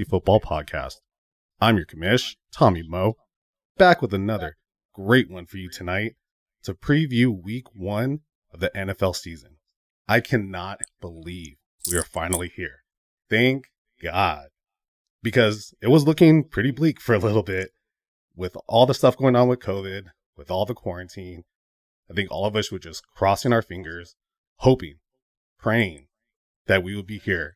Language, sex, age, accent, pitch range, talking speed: English, male, 30-49, American, 90-120 Hz, 155 wpm